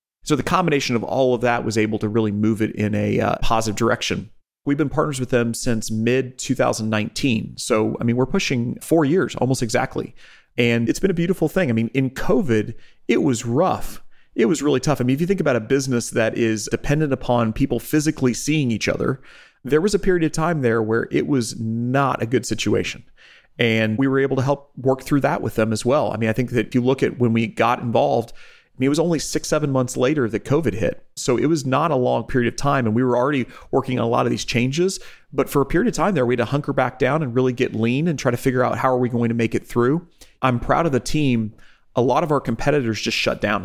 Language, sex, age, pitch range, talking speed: English, male, 30-49, 115-135 Hz, 250 wpm